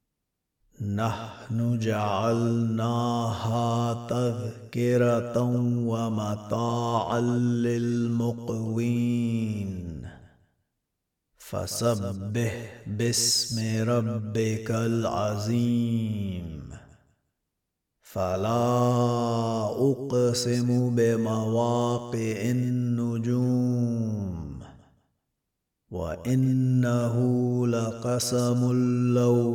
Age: 30-49